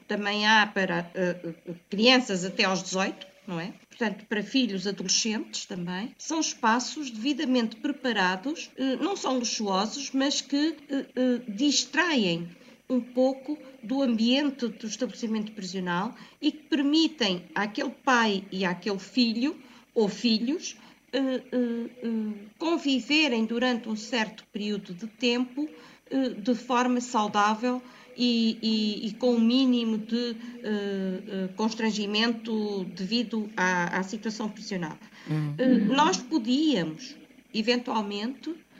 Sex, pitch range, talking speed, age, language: female, 210-265 Hz, 100 wpm, 50-69, Portuguese